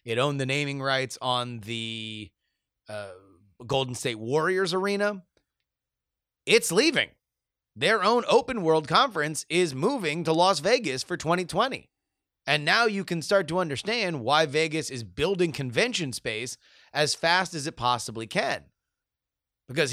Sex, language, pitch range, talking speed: male, English, 125-195 Hz, 140 wpm